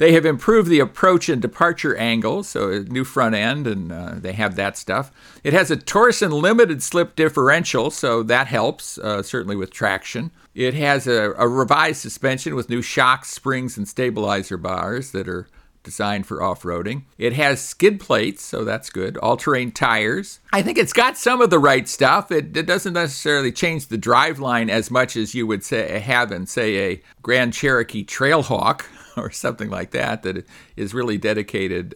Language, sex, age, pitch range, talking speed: English, male, 50-69, 110-160 Hz, 180 wpm